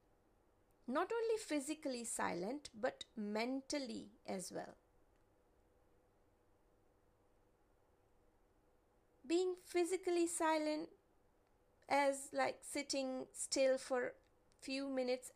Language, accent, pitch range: English, Indian, 190-310 Hz